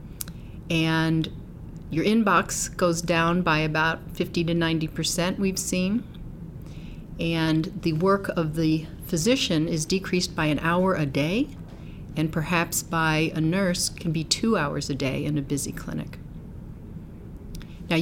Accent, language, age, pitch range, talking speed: American, English, 40-59, 155-180 Hz, 135 wpm